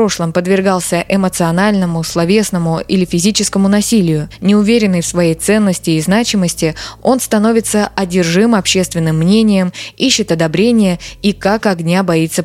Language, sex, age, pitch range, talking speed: Russian, female, 20-39, 170-215 Hz, 110 wpm